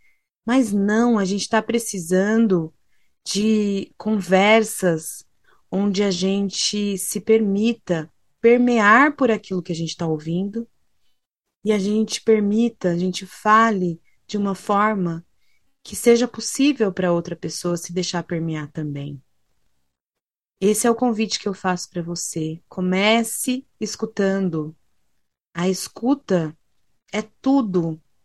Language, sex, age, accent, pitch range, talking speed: Portuguese, female, 20-39, Brazilian, 170-215 Hz, 120 wpm